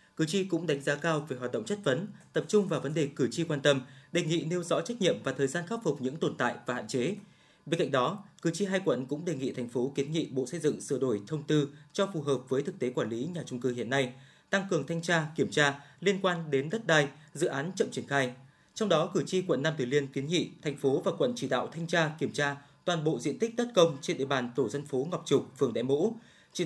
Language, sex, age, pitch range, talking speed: Vietnamese, male, 20-39, 135-170 Hz, 280 wpm